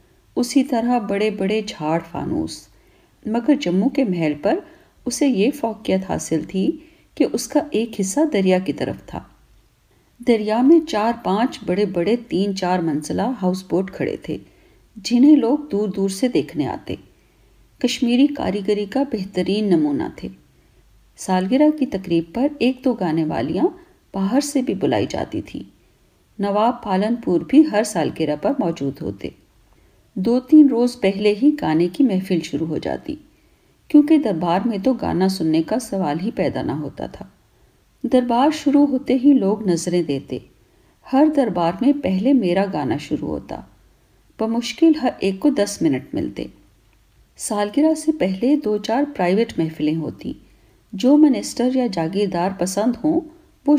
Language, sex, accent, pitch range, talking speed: Hindi, female, native, 180-275 Hz, 150 wpm